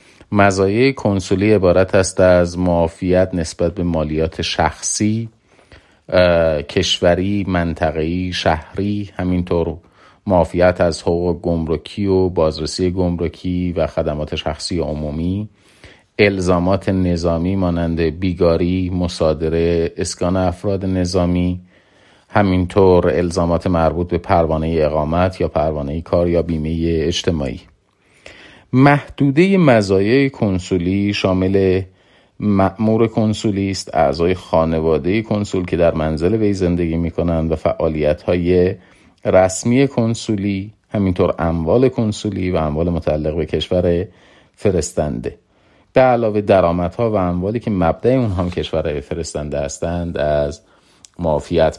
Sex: male